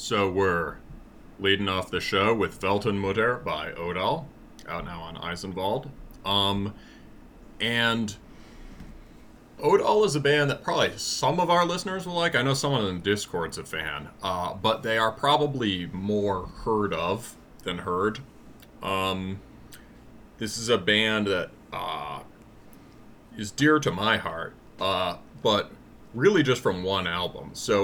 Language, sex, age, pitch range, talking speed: English, male, 30-49, 95-125 Hz, 145 wpm